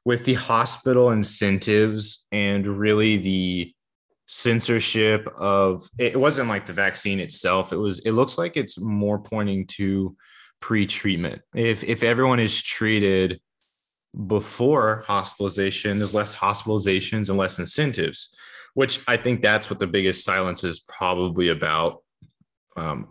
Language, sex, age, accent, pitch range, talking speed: English, male, 20-39, American, 95-115 Hz, 130 wpm